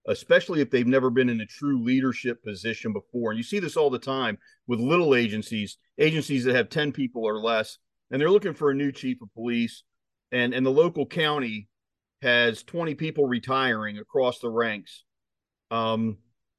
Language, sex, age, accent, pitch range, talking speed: English, male, 40-59, American, 120-160 Hz, 180 wpm